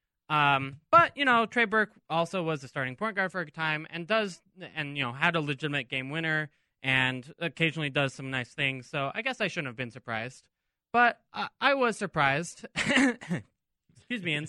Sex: male